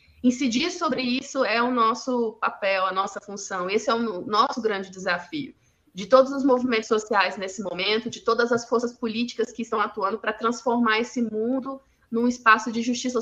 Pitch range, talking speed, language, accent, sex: 210-245 Hz, 175 wpm, Portuguese, Brazilian, female